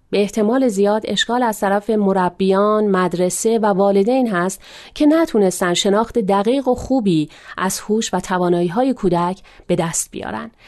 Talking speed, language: 145 wpm, Persian